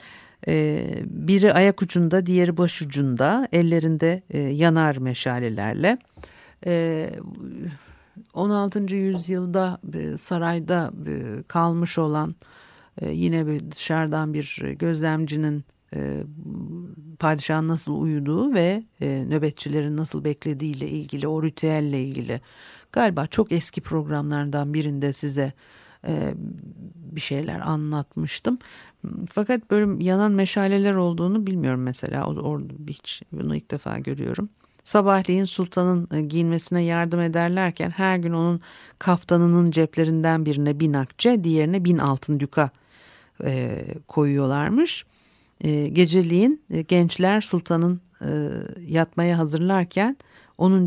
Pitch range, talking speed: 150-185 Hz, 95 wpm